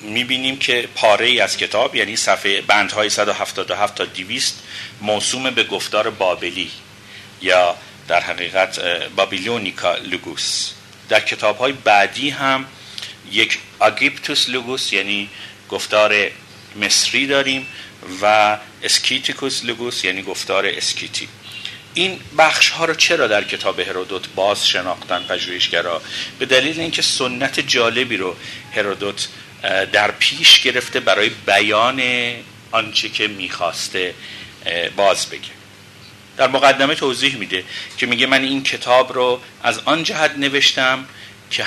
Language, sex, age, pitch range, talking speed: Persian, male, 50-69, 100-130 Hz, 120 wpm